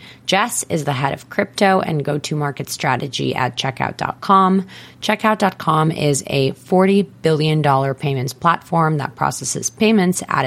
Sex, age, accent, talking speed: female, 20-39, American, 125 wpm